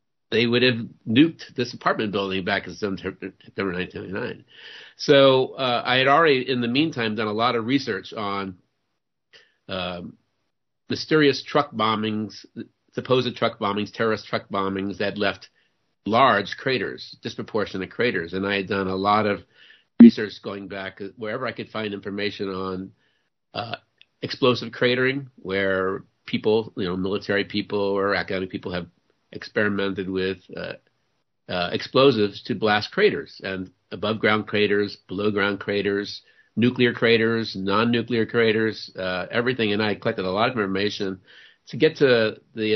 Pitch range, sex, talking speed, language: 95-115 Hz, male, 145 wpm, English